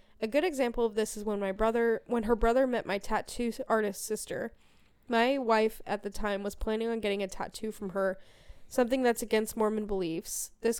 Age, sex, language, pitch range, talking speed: 10-29, female, English, 200-235 Hz, 200 wpm